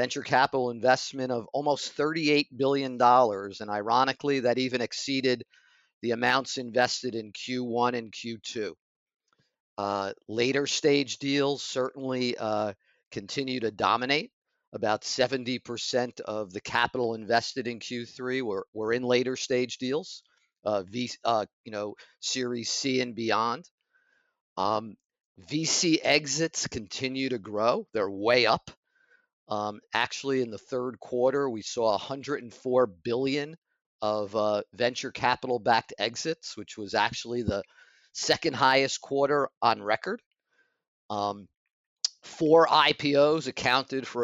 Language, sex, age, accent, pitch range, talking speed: English, male, 50-69, American, 120-145 Hz, 120 wpm